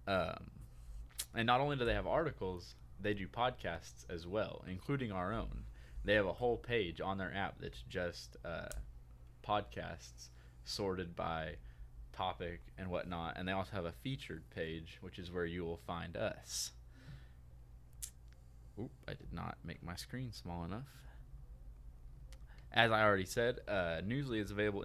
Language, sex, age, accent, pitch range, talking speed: English, male, 20-39, American, 85-105 Hz, 155 wpm